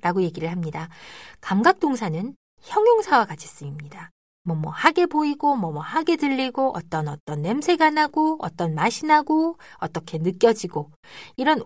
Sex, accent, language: female, native, Korean